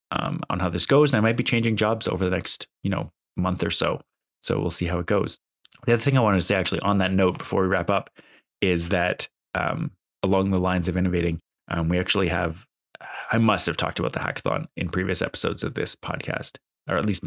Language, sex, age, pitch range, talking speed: English, male, 20-39, 90-100 Hz, 235 wpm